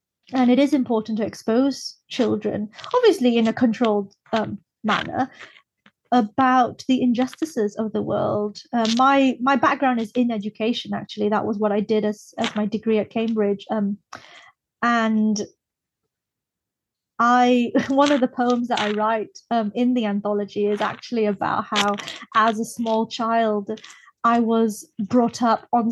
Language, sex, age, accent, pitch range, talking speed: English, female, 30-49, British, 215-250 Hz, 150 wpm